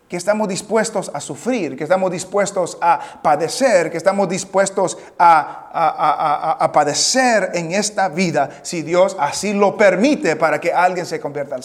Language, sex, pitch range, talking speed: English, male, 160-215 Hz, 160 wpm